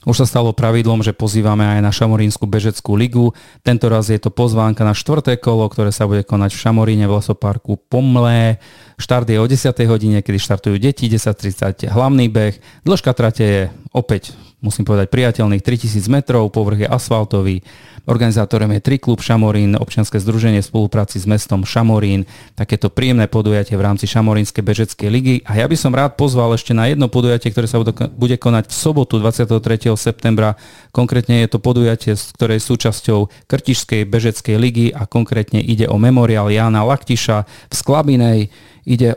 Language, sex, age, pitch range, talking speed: Slovak, male, 40-59, 105-120 Hz, 165 wpm